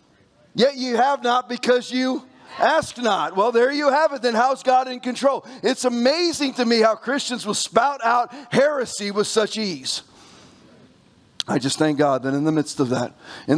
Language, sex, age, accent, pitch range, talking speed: English, male, 40-59, American, 160-240 Hz, 185 wpm